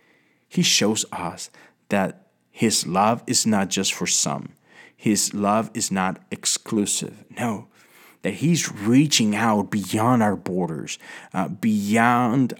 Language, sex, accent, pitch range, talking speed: English, male, American, 100-135 Hz, 125 wpm